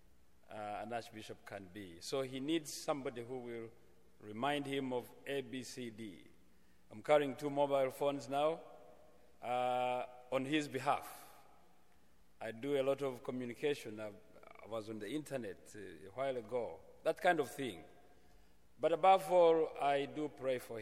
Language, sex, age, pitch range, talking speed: English, male, 40-59, 105-135 Hz, 160 wpm